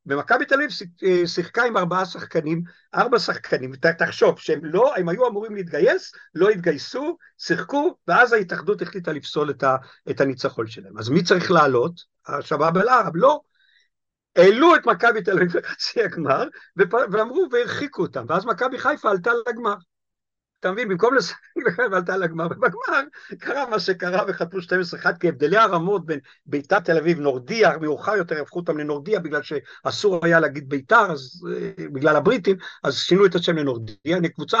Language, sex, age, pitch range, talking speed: Hebrew, male, 50-69, 155-220 Hz, 150 wpm